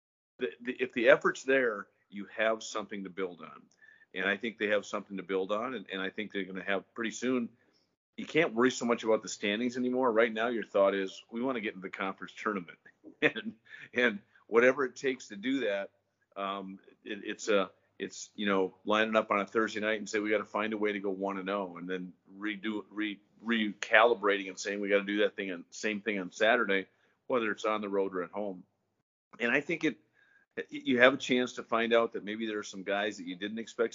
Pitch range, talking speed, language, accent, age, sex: 95-115 Hz, 235 wpm, English, American, 40-59, male